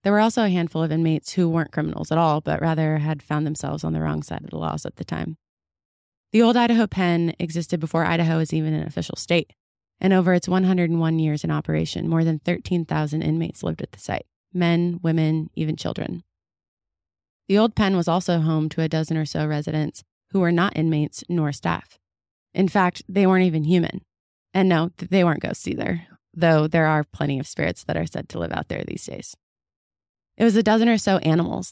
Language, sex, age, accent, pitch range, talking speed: English, female, 20-39, American, 150-180 Hz, 210 wpm